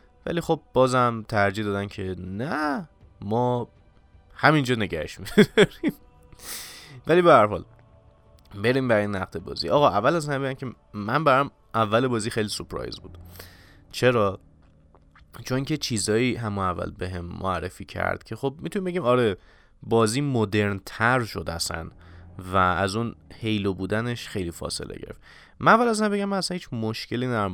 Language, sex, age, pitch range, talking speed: Persian, male, 20-39, 95-130 Hz, 145 wpm